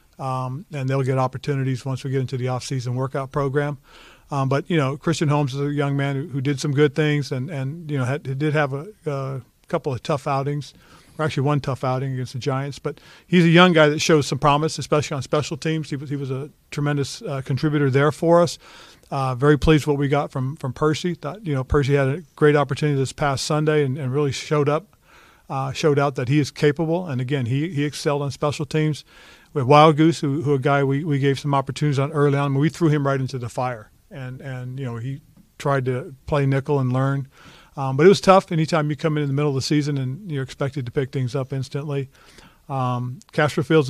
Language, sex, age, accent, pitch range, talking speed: English, male, 40-59, American, 135-150 Hz, 240 wpm